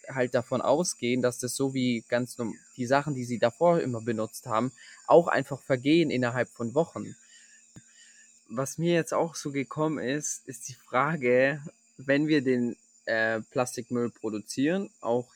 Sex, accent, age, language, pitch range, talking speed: male, German, 20-39, German, 125-160 Hz, 150 wpm